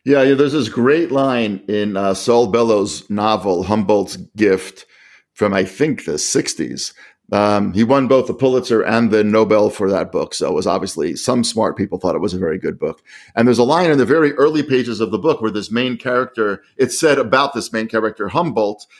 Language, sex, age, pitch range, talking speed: English, male, 50-69, 105-130 Hz, 210 wpm